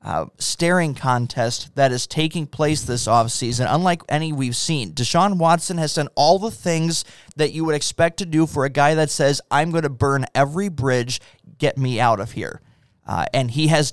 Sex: male